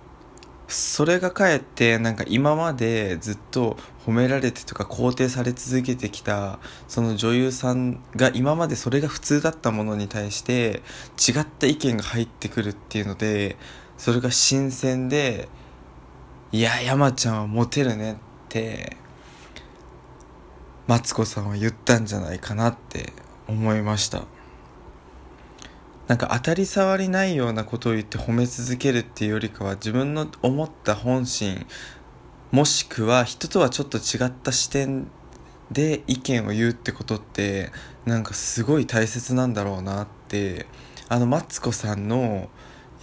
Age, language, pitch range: 20-39, Japanese, 105-130 Hz